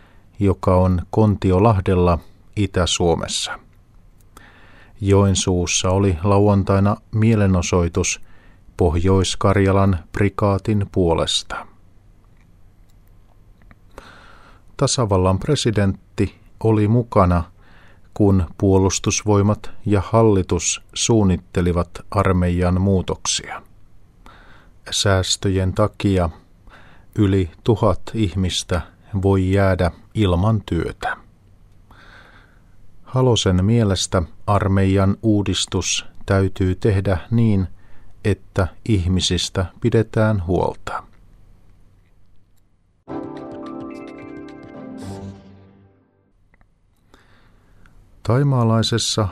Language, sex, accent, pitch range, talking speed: Finnish, male, native, 90-105 Hz, 50 wpm